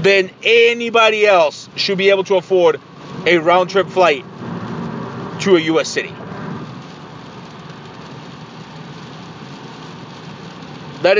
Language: English